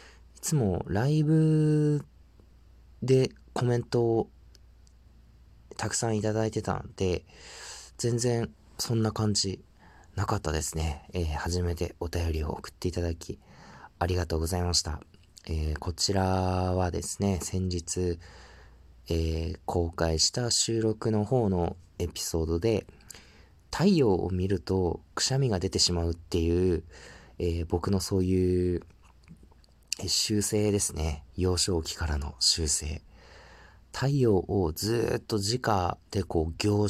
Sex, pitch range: male, 80-105 Hz